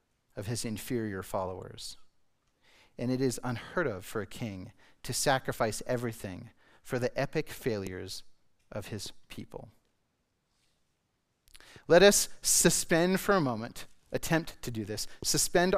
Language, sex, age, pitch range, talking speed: English, male, 30-49, 120-155 Hz, 125 wpm